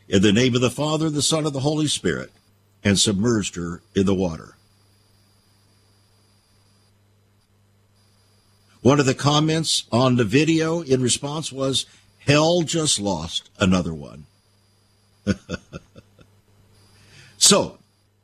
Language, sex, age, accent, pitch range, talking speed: English, male, 60-79, American, 100-140 Hz, 110 wpm